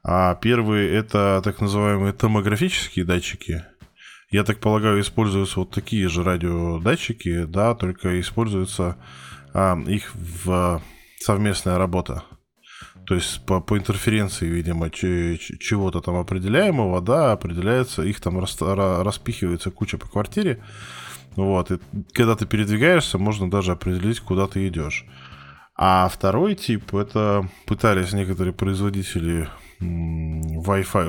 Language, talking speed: Russian, 120 wpm